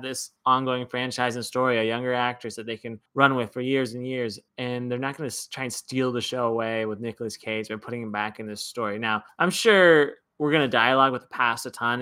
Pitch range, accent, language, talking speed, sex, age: 120-140 Hz, American, English, 250 wpm, male, 20-39